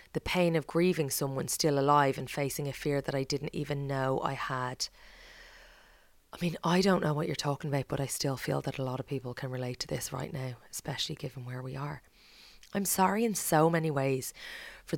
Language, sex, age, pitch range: English, female, 30-49, 140-170 Hz